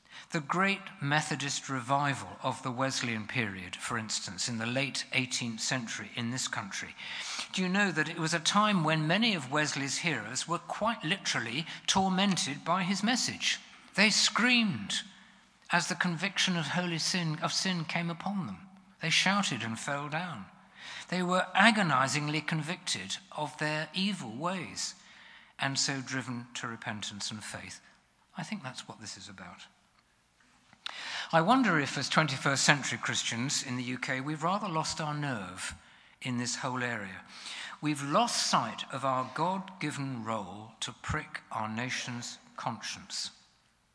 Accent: British